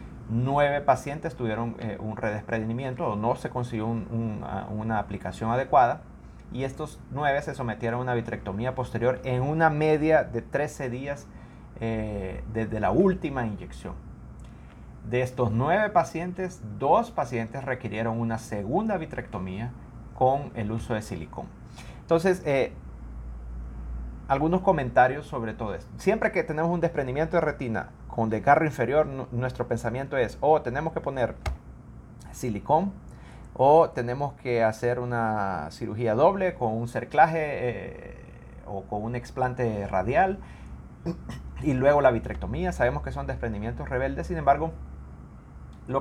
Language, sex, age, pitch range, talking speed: Spanish, male, 30-49, 110-140 Hz, 140 wpm